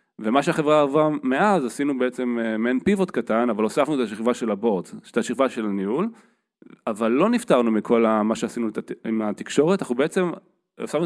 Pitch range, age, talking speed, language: 115-160 Hz, 20-39, 175 wpm, Hebrew